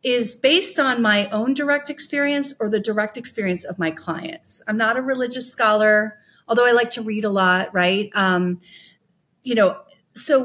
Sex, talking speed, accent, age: female, 180 wpm, American, 40-59